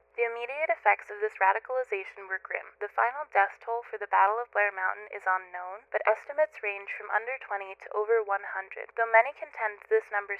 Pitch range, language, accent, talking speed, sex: 200-250 Hz, English, American, 195 wpm, female